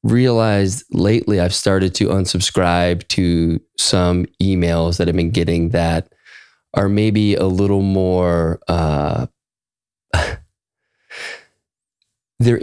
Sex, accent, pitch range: male, American, 90-125 Hz